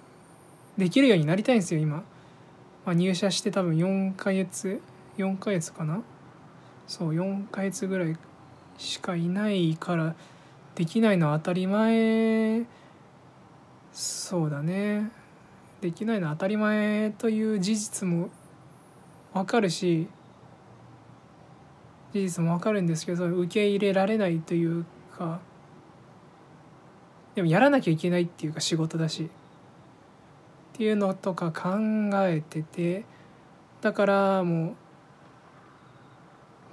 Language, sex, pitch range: Japanese, male, 160-200 Hz